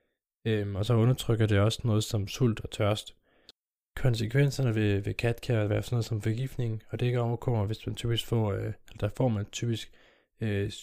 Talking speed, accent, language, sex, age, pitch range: 190 wpm, native, Danish, male, 20-39, 105-125 Hz